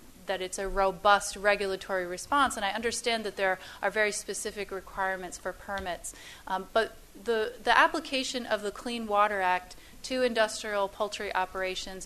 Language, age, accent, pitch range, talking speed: English, 30-49, American, 185-215 Hz, 155 wpm